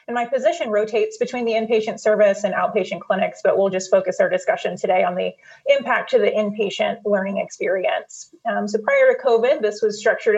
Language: English